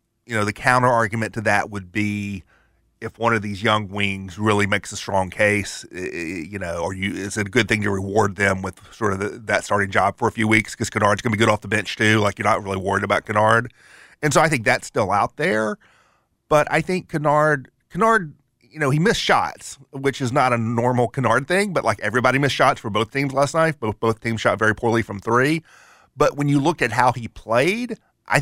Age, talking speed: 40-59, 235 wpm